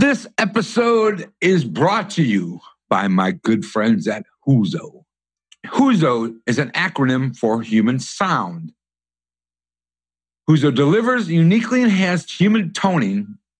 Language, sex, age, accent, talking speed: English, male, 60-79, American, 110 wpm